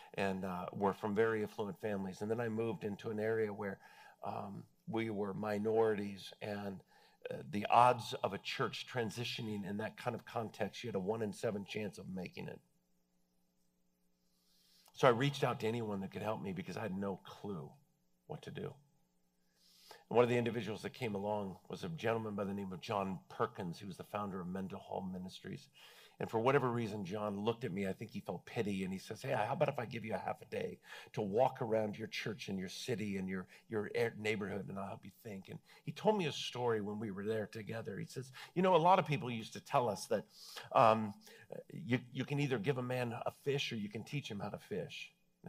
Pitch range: 100-125 Hz